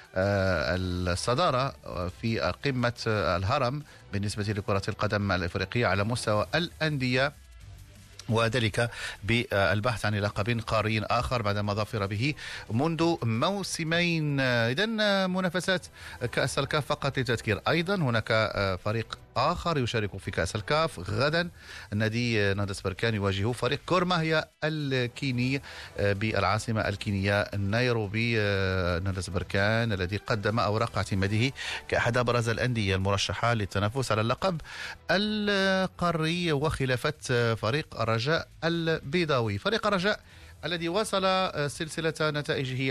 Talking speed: 100 wpm